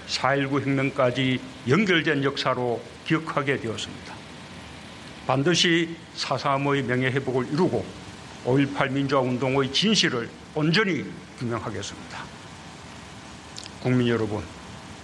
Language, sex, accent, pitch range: Korean, male, native, 125-155 Hz